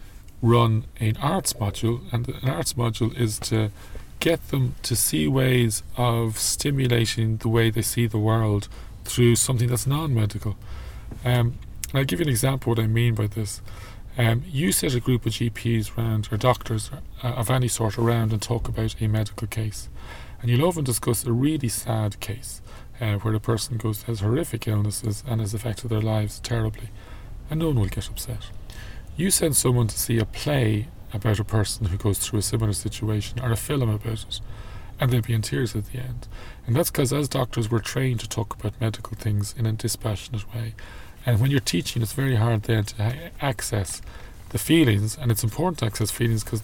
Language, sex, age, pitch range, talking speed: English, male, 30-49, 105-120 Hz, 195 wpm